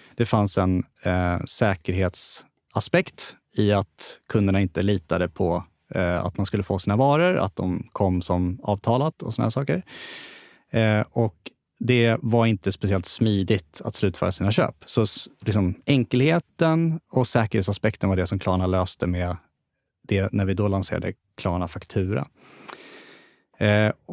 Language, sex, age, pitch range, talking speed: English, male, 30-49, 95-120 Hz, 140 wpm